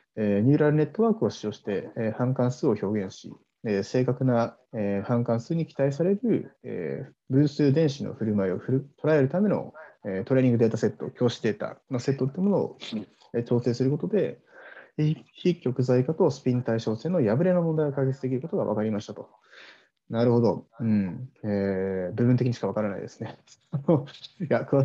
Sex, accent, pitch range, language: male, native, 105-150 Hz, Japanese